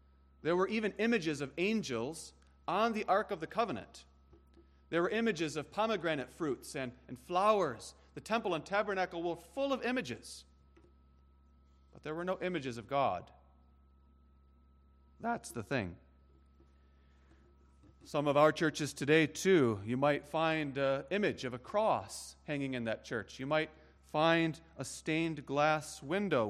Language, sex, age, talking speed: English, male, 40-59, 145 wpm